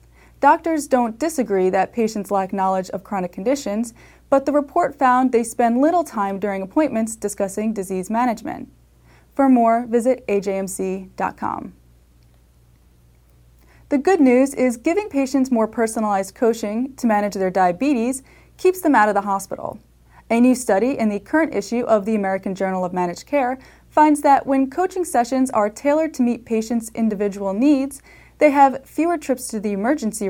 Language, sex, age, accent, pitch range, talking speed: English, female, 20-39, American, 195-270 Hz, 155 wpm